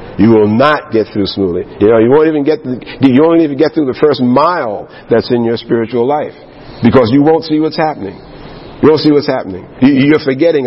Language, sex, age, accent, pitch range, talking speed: English, male, 50-69, American, 135-220 Hz, 230 wpm